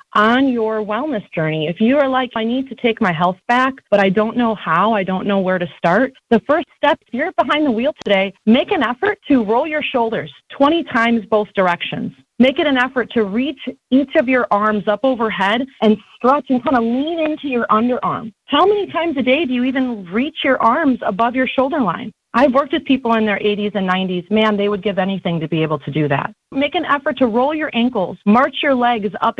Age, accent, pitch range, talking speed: 30-49, American, 205-265 Hz, 230 wpm